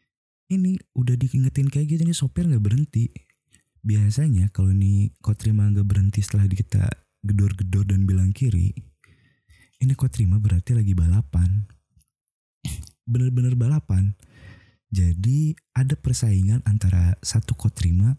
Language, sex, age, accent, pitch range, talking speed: Indonesian, male, 20-39, native, 95-125 Hz, 110 wpm